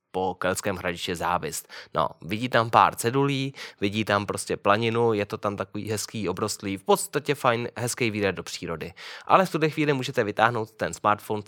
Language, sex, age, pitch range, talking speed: Czech, male, 20-39, 95-125 Hz, 180 wpm